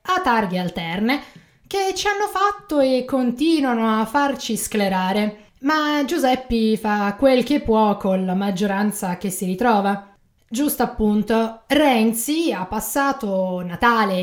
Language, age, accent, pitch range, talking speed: Italian, 20-39, native, 210-280 Hz, 125 wpm